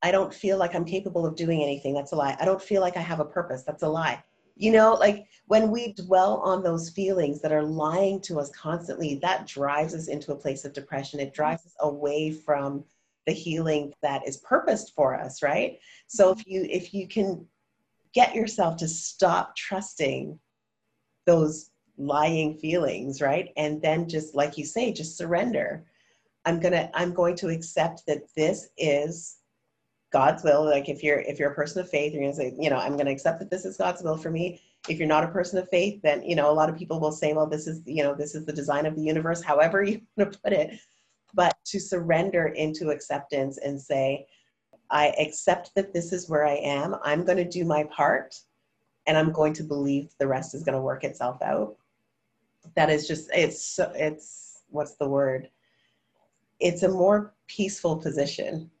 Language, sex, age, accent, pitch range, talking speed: English, female, 40-59, American, 145-180 Hz, 200 wpm